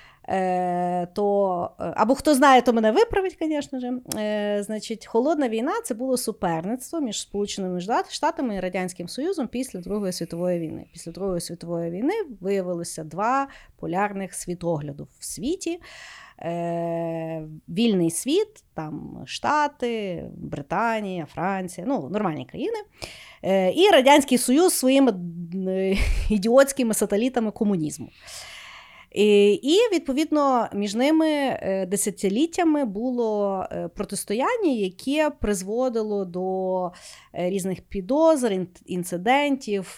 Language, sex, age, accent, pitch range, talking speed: Ukrainian, female, 30-49, native, 185-270 Hz, 105 wpm